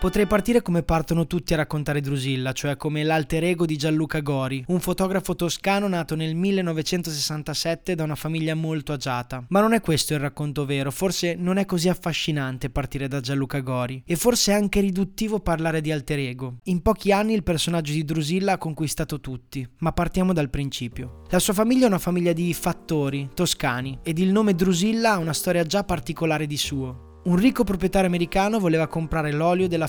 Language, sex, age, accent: Italian, male, 20-39, native